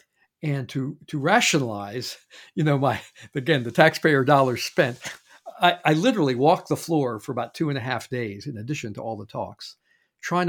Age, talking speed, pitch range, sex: 50-69, 185 wpm, 120-160 Hz, male